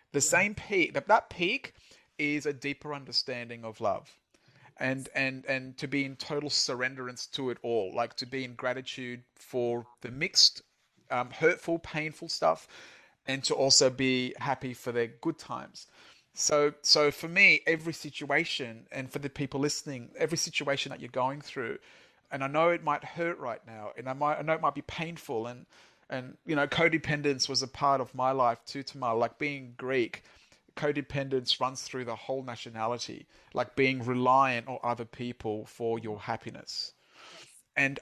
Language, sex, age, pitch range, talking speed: English, male, 30-49, 125-145 Hz, 175 wpm